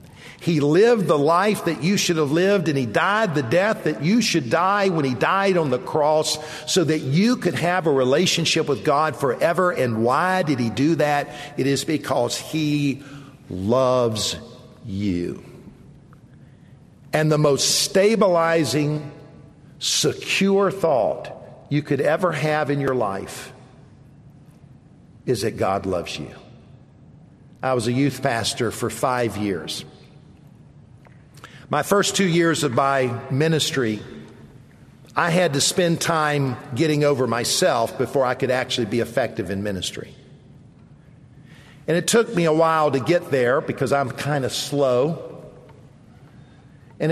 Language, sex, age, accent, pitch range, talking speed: English, male, 50-69, American, 130-165 Hz, 140 wpm